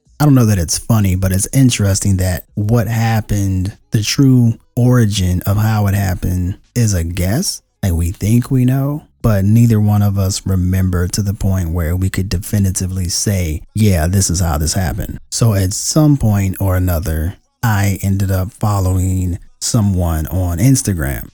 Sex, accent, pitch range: male, American, 95-115 Hz